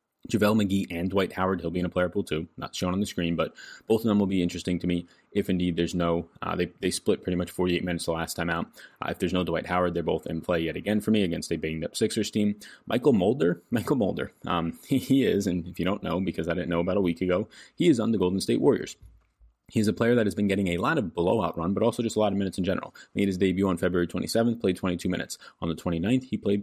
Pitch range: 85-100 Hz